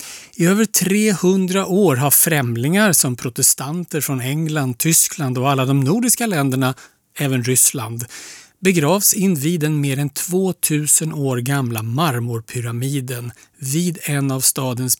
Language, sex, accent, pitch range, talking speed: Swedish, male, native, 130-170 Hz, 130 wpm